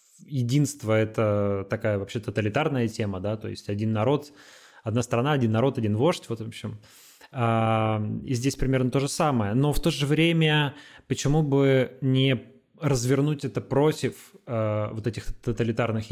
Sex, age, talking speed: male, 20-39, 155 wpm